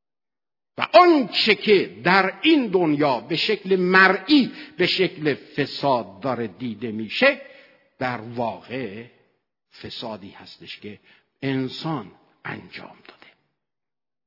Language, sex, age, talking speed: Persian, male, 50-69, 100 wpm